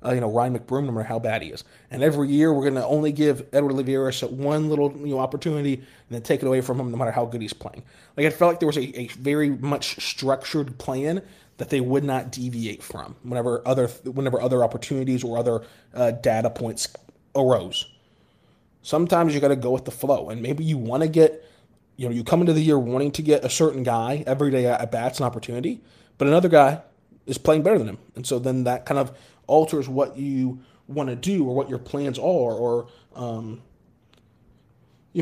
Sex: male